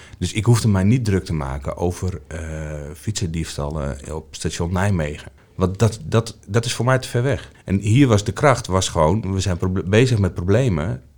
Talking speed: 200 wpm